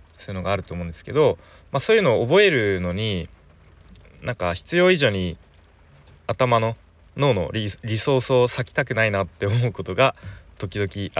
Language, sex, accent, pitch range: Japanese, male, native, 90-135 Hz